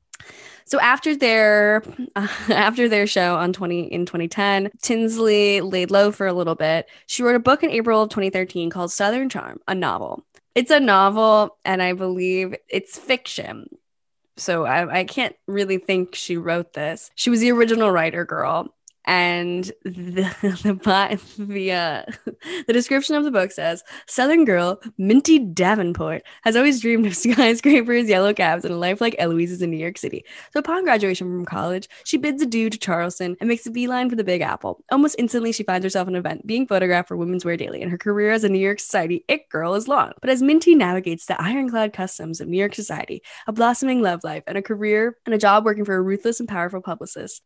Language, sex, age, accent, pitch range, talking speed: English, female, 20-39, American, 180-240 Hz, 200 wpm